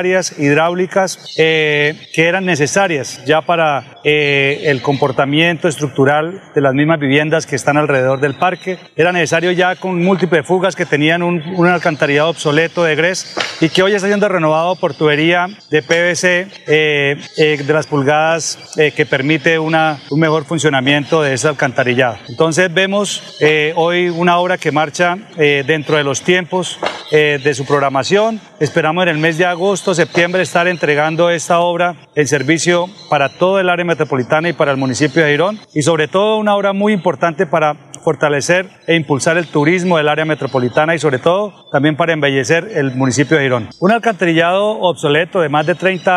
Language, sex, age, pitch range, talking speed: Spanish, male, 40-59, 150-175 Hz, 175 wpm